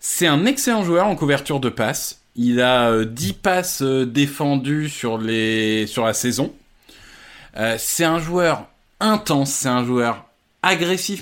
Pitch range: 125-175 Hz